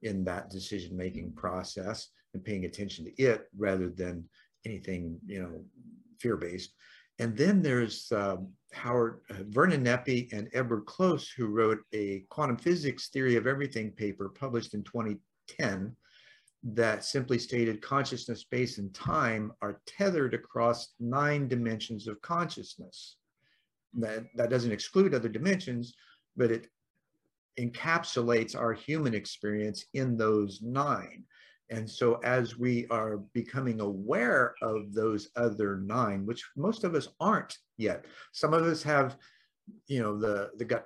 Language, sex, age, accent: English, male, 50-69, American